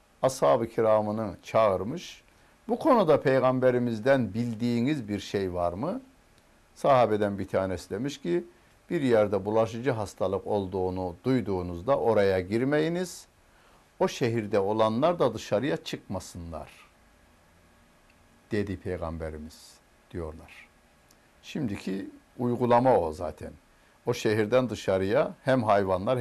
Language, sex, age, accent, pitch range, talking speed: Turkish, male, 60-79, native, 90-140 Hz, 95 wpm